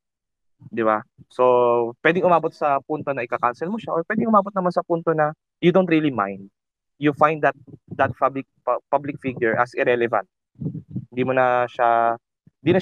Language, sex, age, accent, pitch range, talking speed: English, male, 20-39, Filipino, 120-160 Hz, 160 wpm